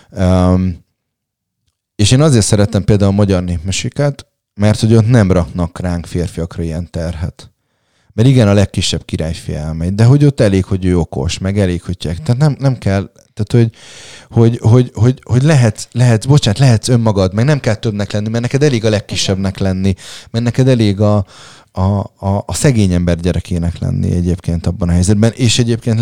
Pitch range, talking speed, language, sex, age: 85-110 Hz, 175 wpm, Hungarian, male, 30-49